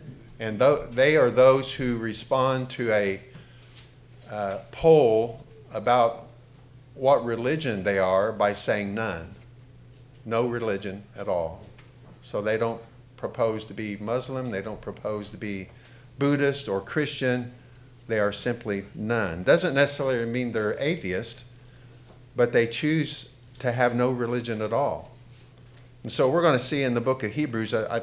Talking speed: 140 wpm